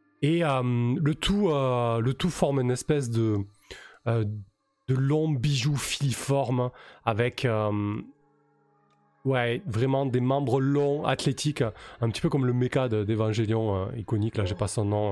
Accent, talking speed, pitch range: French, 155 wpm, 115-150 Hz